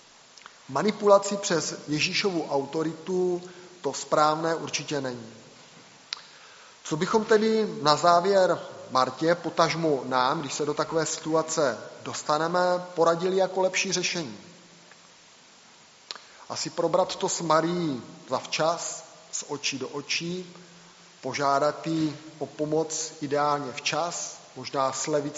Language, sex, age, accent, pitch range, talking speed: Czech, male, 30-49, native, 145-175 Hz, 105 wpm